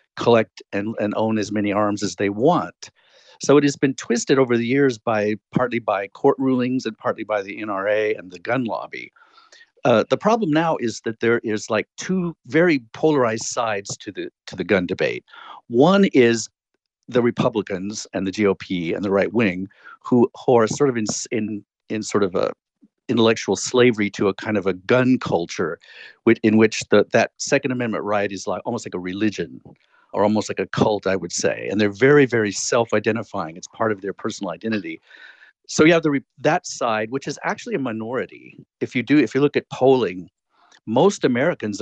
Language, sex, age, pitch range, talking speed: English, male, 50-69, 105-135 Hz, 195 wpm